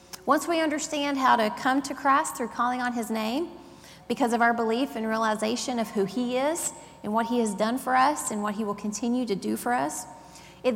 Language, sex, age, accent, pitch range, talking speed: English, female, 30-49, American, 210-255 Hz, 225 wpm